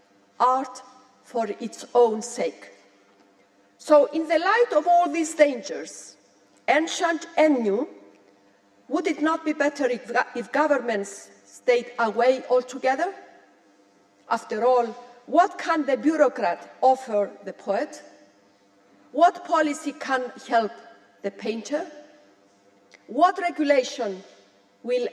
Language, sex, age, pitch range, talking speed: English, female, 50-69, 185-290 Hz, 105 wpm